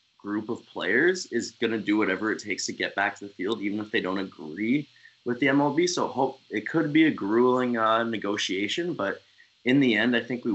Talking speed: 230 wpm